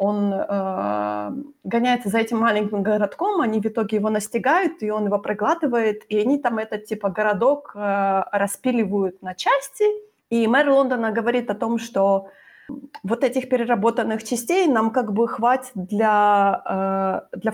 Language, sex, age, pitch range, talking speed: Ukrainian, female, 20-39, 200-245 Hz, 145 wpm